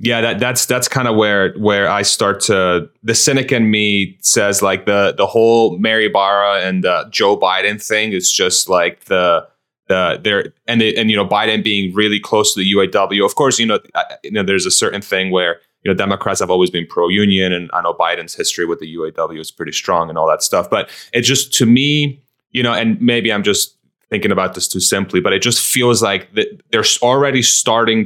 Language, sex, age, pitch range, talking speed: English, male, 20-39, 100-120 Hz, 220 wpm